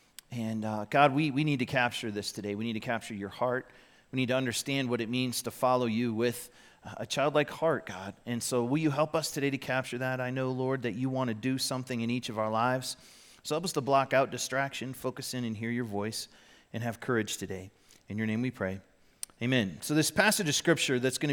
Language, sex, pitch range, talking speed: English, male, 120-145 Hz, 240 wpm